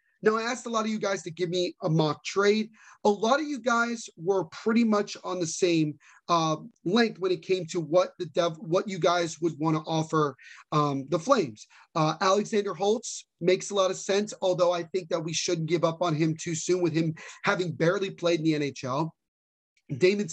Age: 30-49